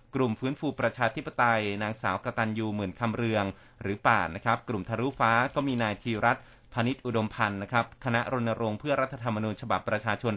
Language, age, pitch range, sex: Thai, 30-49, 110-130 Hz, male